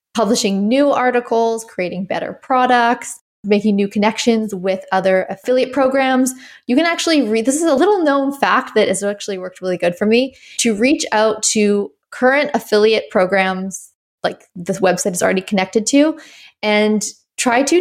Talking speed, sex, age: 160 wpm, female, 20-39